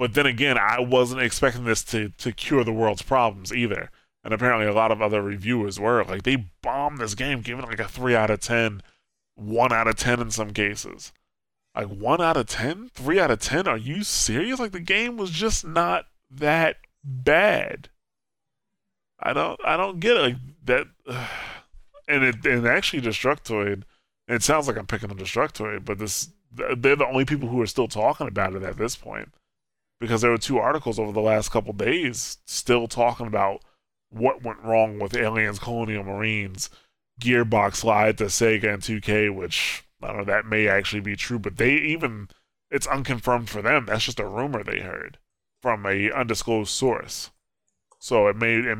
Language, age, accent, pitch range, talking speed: English, 20-39, American, 105-125 Hz, 190 wpm